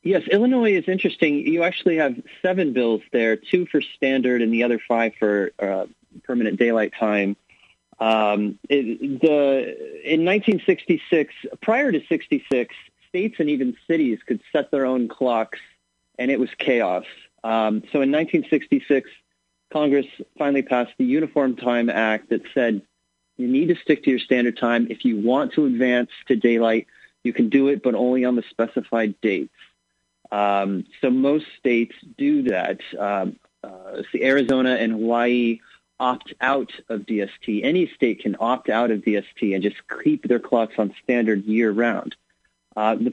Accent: American